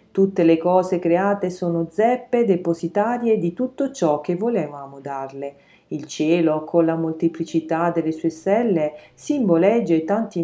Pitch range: 160-230 Hz